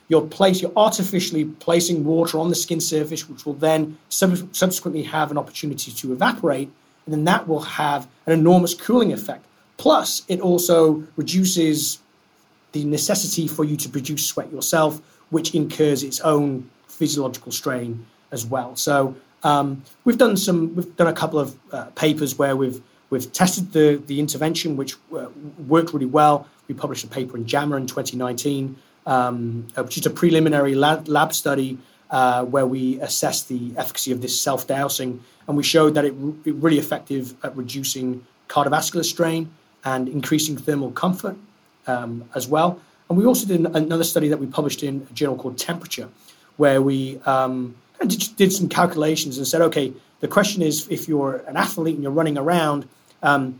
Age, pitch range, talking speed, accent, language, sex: 30-49, 135-165 Hz, 170 wpm, British, English, male